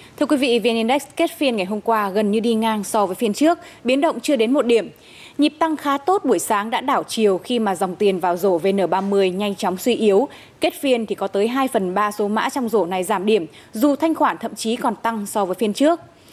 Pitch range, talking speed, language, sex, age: 205-275 Hz, 255 wpm, Vietnamese, female, 20-39